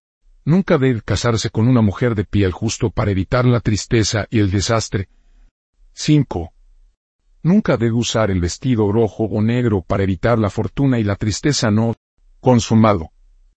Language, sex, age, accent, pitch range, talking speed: Spanish, male, 50-69, Mexican, 90-125 Hz, 150 wpm